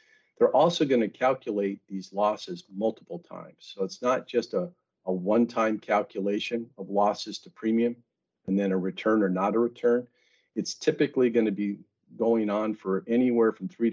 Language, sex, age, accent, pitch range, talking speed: English, male, 50-69, American, 100-120 Hz, 170 wpm